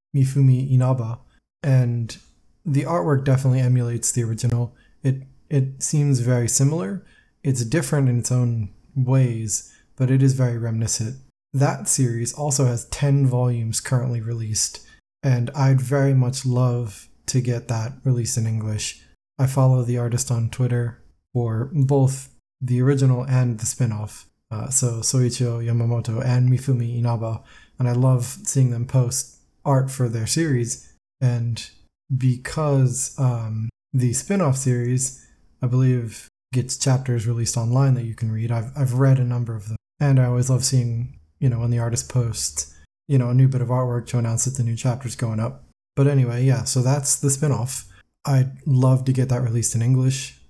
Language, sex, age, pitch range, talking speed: English, male, 20-39, 115-130 Hz, 165 wpm